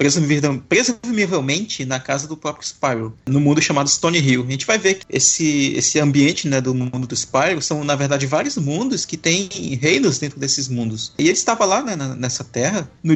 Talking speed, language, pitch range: 190 wpm, Portuguese, 125-160 Hz